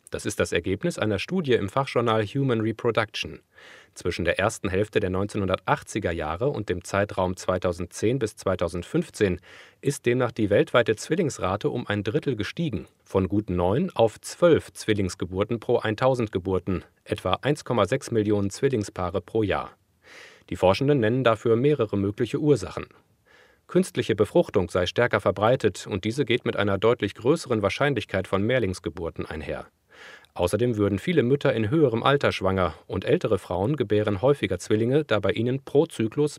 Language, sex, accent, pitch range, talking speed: German, male, German, 95-130 Hz, 145 wpm